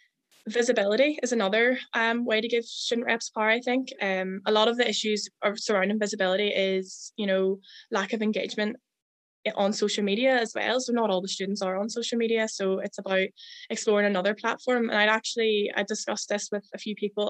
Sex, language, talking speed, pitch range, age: female, English, 200 wpm, 195-230 Hz, 10-29